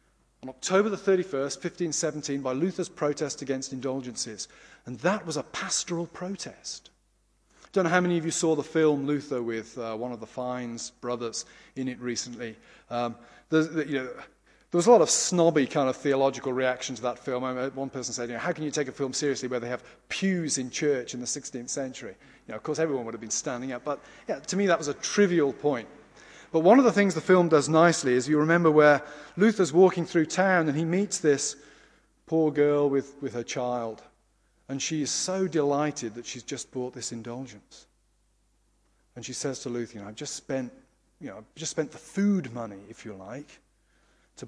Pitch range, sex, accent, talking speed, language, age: 125-160 Hz, male, British, 210 wpm, English, 30-49